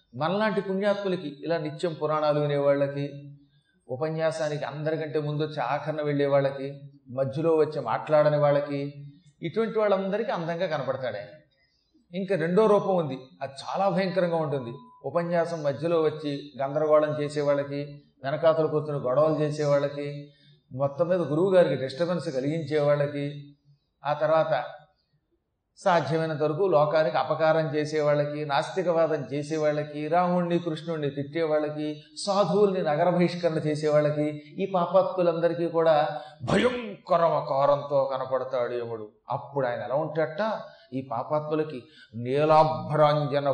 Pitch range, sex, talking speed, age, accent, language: 145-175 Hz, male, 100 wpm, 40-59, native, Telugu